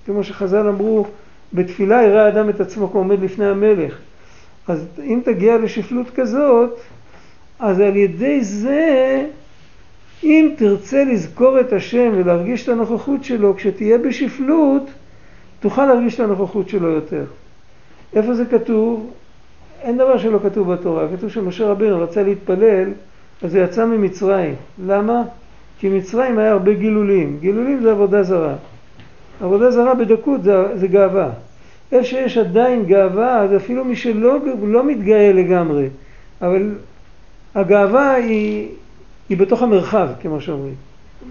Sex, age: male, 50-69